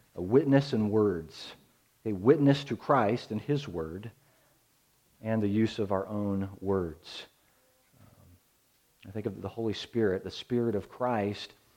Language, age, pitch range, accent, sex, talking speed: English, 40-59, 105-130 Hz, American, male, 150 wpm